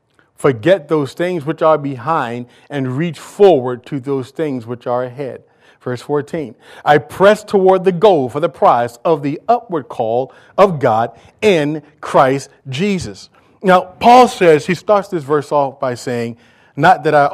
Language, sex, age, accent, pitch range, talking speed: English, male, 40-59, American, 130-180 Hz, 165 wpm